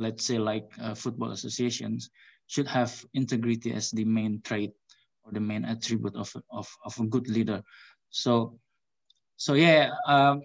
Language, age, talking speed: English, 20-39, 155 wpm